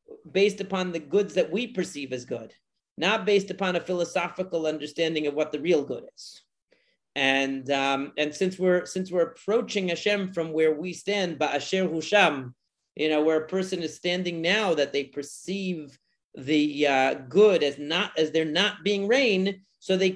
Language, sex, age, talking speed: English, male, 40-59, 175 wpm